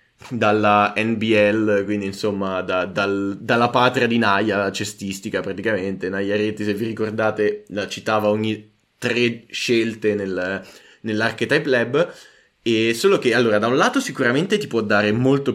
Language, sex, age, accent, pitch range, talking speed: Italian, male, 20-39, native, 105-125 Hz, 145 wpm